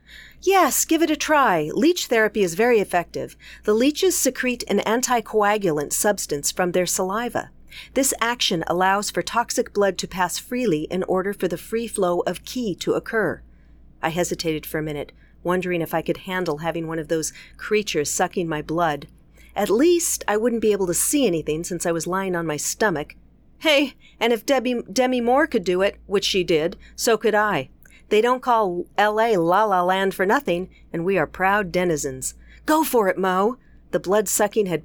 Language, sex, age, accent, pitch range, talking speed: English, female, 40-59, American, 170-230 Hz, 185 wpm